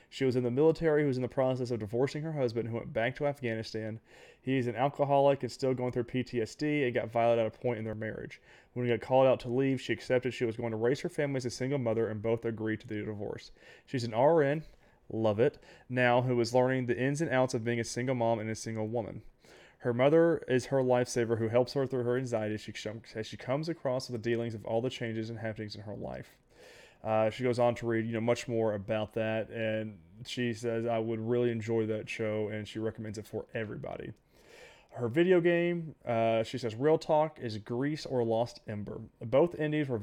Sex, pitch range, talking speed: male, 115-130 Hz, 230 wpm